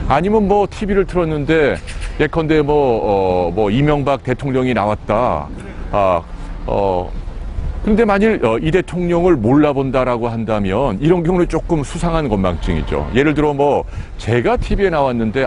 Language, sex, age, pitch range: Korean, male, 40-59, 105-150 Hz